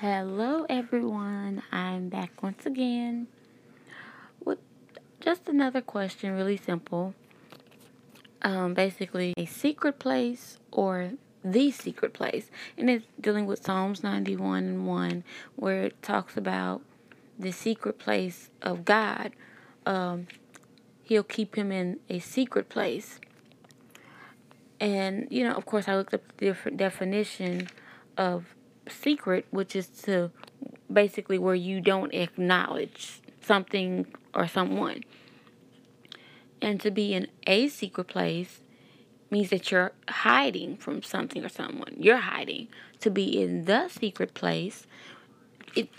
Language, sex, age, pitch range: English, female, 20-39, 180-225 Hz